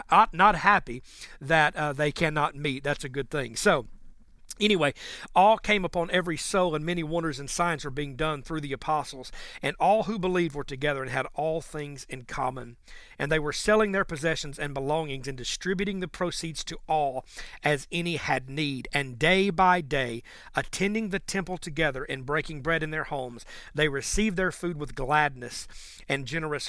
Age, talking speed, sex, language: 40-59, 180 wpm, male, English